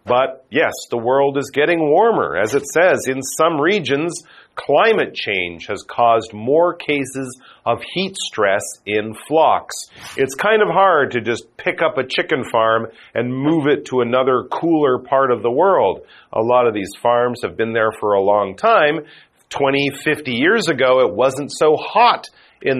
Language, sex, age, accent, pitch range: Chinese, male, 40-59, American, 120-155 Hz